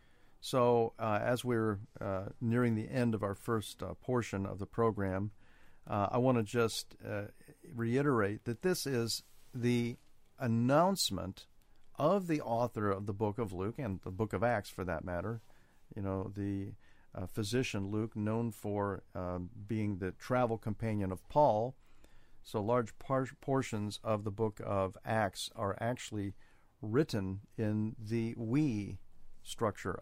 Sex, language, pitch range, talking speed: male, English, 100-120 Hz, 145 wpm